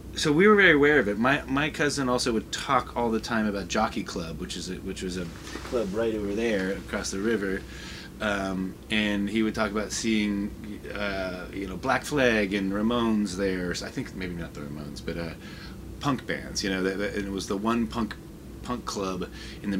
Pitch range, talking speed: 85-105 Hz, 220 wpm